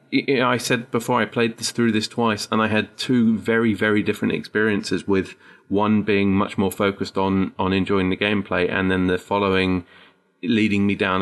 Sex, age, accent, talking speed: male, 30-49, British, 185 wpm